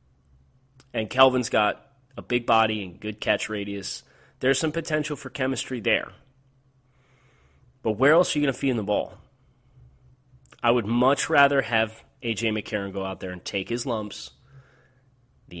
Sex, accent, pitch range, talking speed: male, American, 100-130 Hz, 160 wpm